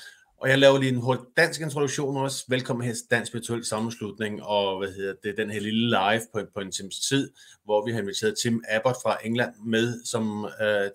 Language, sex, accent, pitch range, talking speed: Danish, male, native, 105-120 Hz, 215 wpm